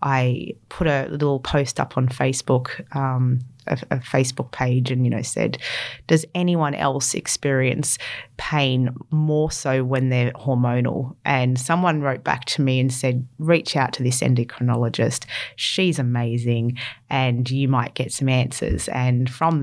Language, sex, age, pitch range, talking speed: English, female, 30-49, 125-155 Hz, 155 wpm